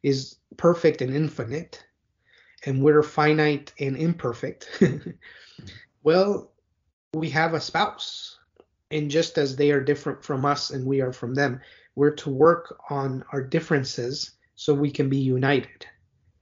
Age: 30-49